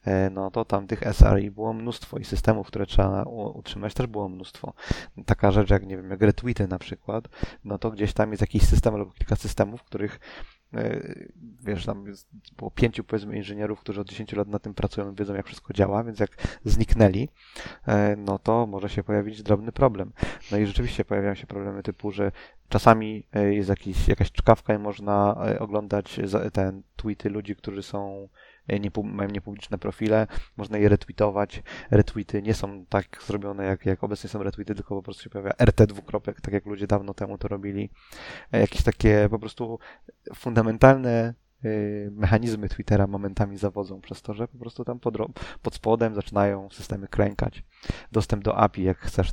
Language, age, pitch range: Polish, 20-39, 100-110 Hz